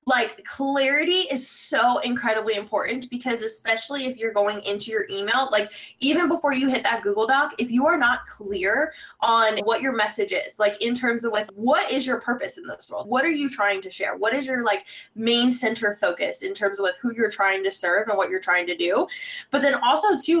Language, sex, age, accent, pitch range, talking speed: English, female, 20-39, American, 205-275 Hz, 225 wpm